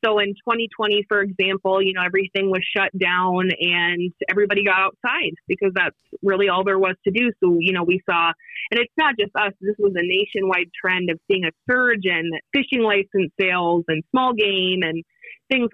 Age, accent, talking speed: 20-39, American, 195 wpm